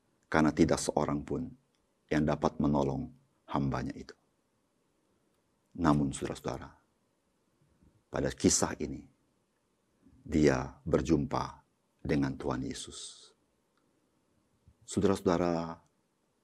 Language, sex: Indonesian, male